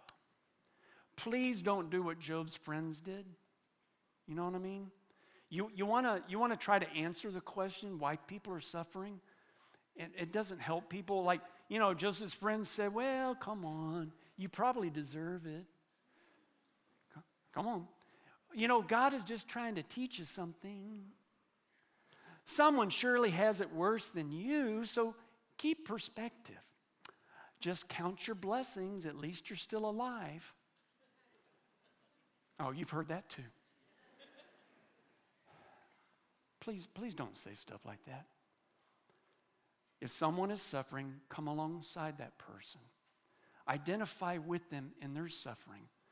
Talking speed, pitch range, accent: 135 wpm, 160-215 Hz, American